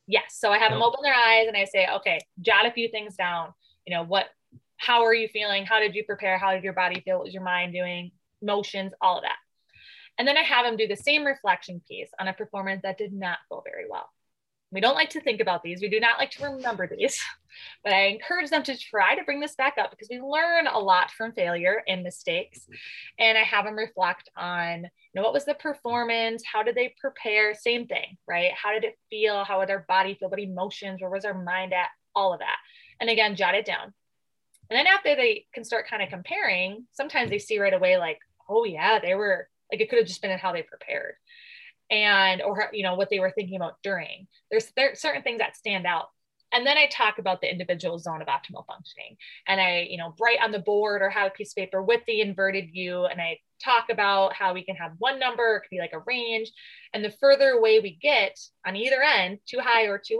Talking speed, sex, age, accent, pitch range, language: 240 wpm, female, 20-39, American, 190-275 Hz, English